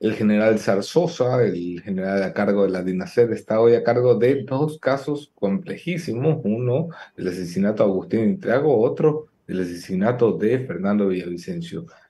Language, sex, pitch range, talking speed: English, male, 95-115 Hz, 150 wpm